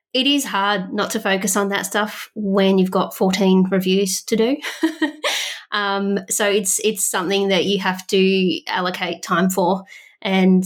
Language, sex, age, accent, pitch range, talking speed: English, female, 20-39, Australian, 185-215 Hz, 165 wpm